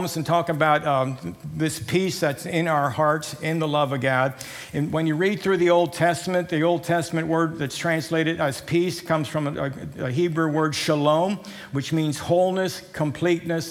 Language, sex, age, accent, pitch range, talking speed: English, male, 60-79, American, 140-165 Hz, 185 wpm